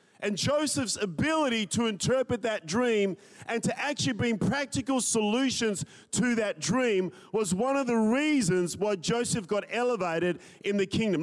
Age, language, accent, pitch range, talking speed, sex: 40-59, English, Australian, 180-235 Hz, 150 wpm, male